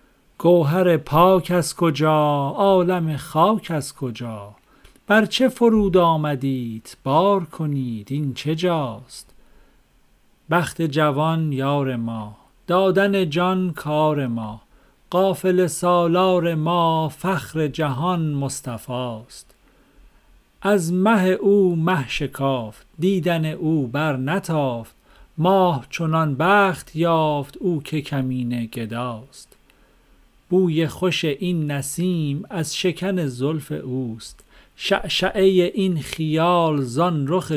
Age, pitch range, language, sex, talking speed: 50-69, 135-180 Hz, Persian, male, 95 wpm